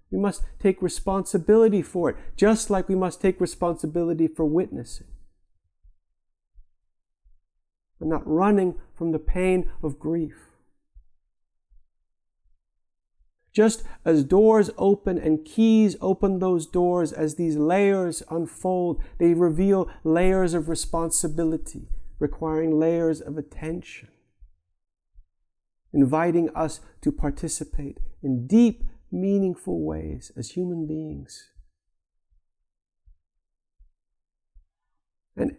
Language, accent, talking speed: English, American, 95 wpm